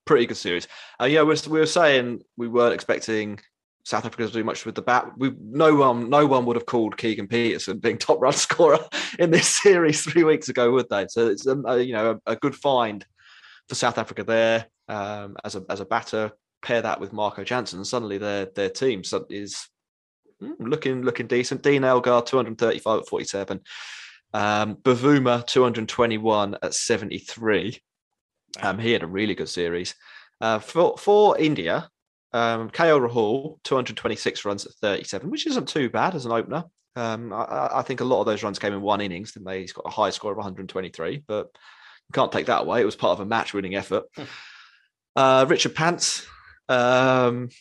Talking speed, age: 200 wpm, 20-39